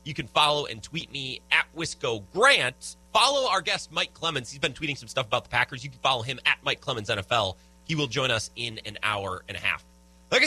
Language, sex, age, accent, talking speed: English, male, 30-49, American, 235 wpm